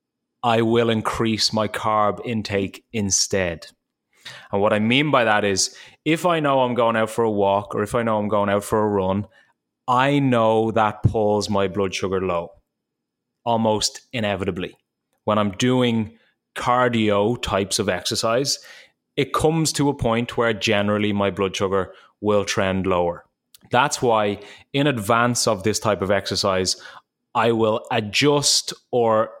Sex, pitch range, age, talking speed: male, 100-120 Hz, 20-39, 155 wpm